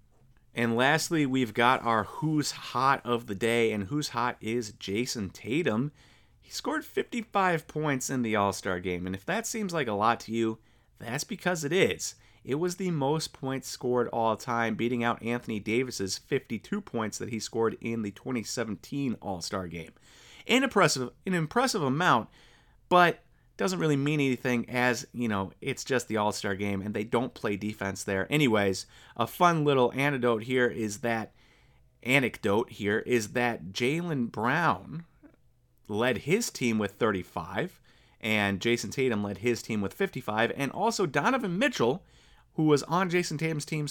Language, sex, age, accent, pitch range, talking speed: English, male, 30-49, American, 110-145 Hz, 165 wpm